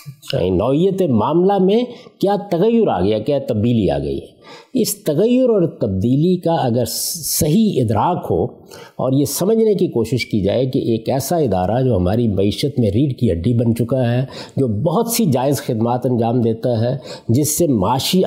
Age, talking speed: 50-69, 170 wpm